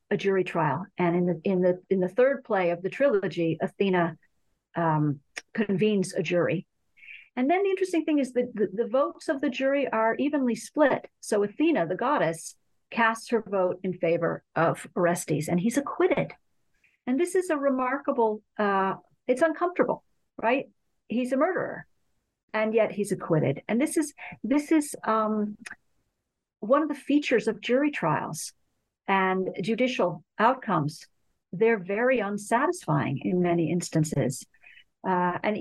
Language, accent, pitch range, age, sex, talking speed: English, American, 185-255 Hz, 50-69, female, 150 wpm